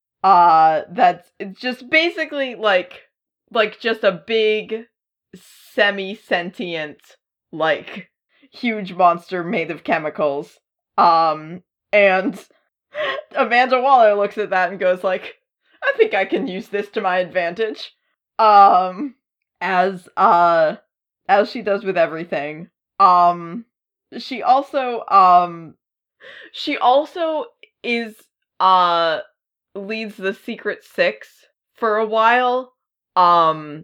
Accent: American